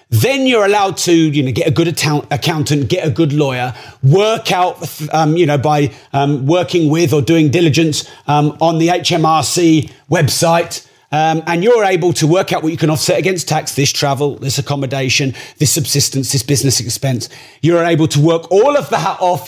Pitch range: 140-185 Hz